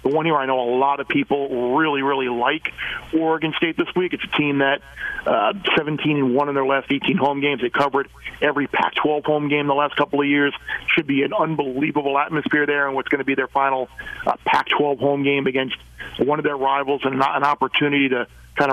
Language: English